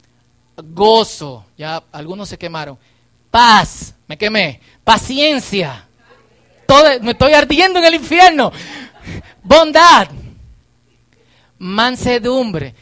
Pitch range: 180-270 Hz